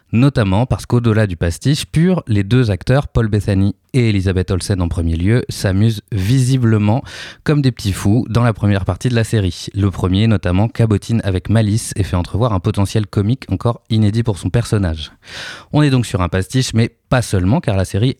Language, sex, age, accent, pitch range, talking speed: French, male, 20-39, French, 95-115 Hz, 195 wpm